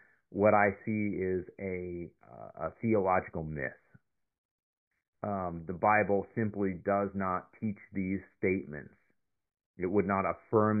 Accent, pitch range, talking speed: American, 85-100 Hz, 120 wpm